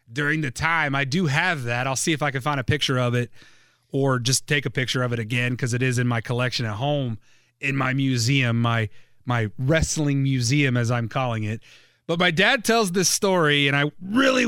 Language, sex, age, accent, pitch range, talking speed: English, male, 30-49, American, 140-195 Hz, 220 wpm